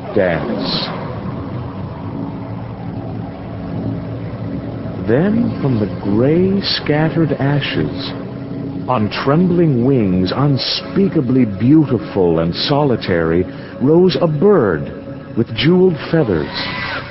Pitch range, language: 100-155 Hz, English